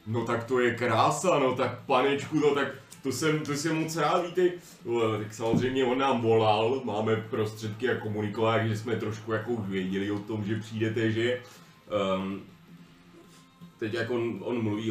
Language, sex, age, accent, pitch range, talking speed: Czech, male, 30-49, native, 105-135 Hz, 160 wpm